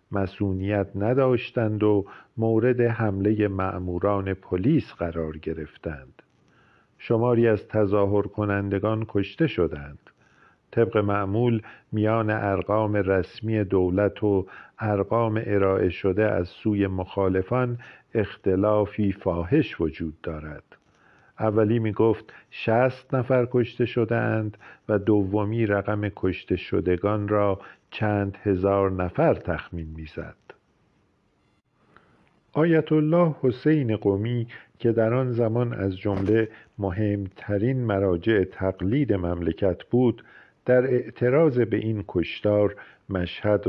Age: 50-69